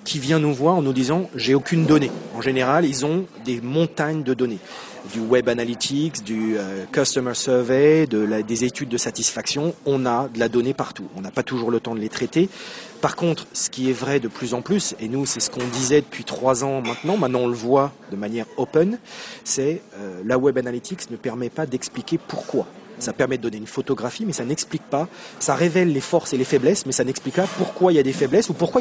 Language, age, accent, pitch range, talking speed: French, 40-59, French, 130-165 Hz, 235 wpm